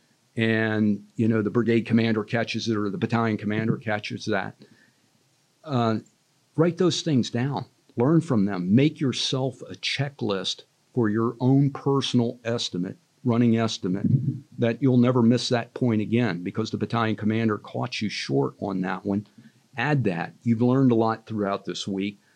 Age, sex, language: 50-69, male, English